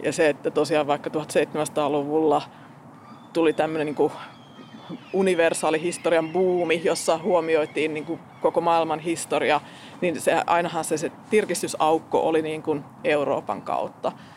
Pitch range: 150-170 Hz